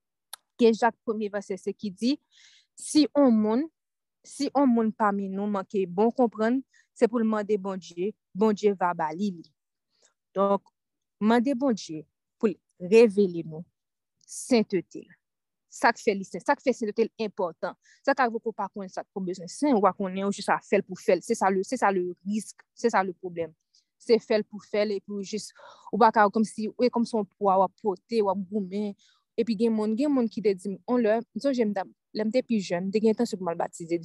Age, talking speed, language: 30-49, 185 wpm, French